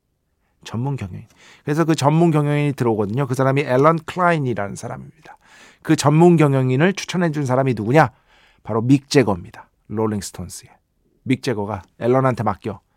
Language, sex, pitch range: Korean, male, 125-180 Hz